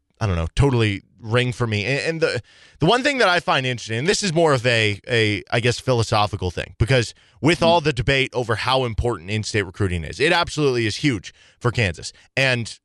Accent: American